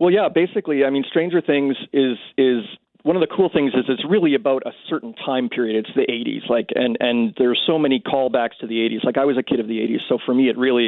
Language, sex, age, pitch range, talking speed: English, male, 40-59, 120-140 Hz, 265 wpm